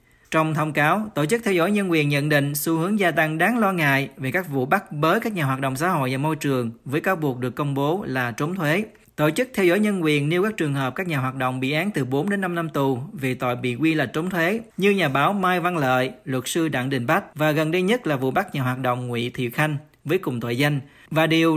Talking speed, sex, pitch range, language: 280 wpm, male, 135-180 Hz, Vietnamese